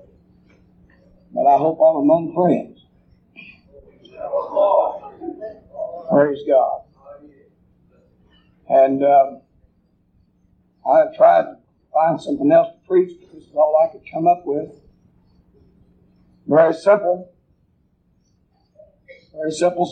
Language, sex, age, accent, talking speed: English, male, 60-79, American, 95 wpm